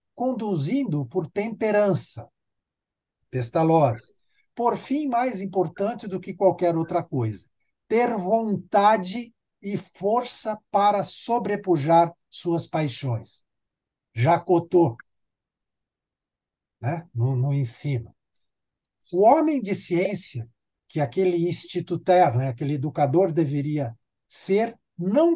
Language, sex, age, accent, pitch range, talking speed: Portuguese, male, 60-79, Brazilian, 145-205 Hz, 90 wpm